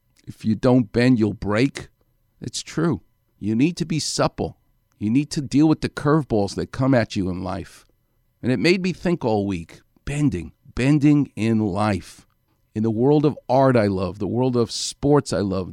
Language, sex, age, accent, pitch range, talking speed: English, male, 50-69, American, 105-135 Hz, 190 wpm